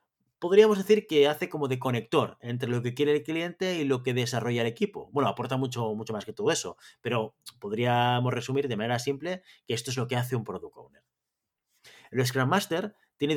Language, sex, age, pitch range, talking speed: Spanish, male, 30-49, 120-160 Hz, 205 wpm